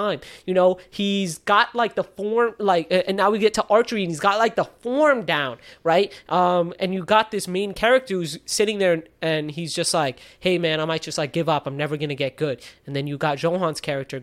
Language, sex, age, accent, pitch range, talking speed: English, male, 20-39, American, 160-205 Hz, 230 wpm